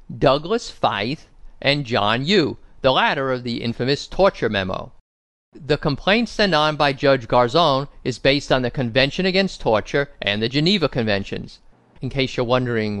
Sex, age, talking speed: male, 50-69, 155 wpm